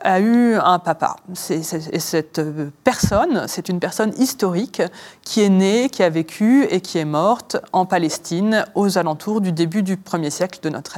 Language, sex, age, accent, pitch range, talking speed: French, female, 30-49, French, 175-220 Hz, 170 wpm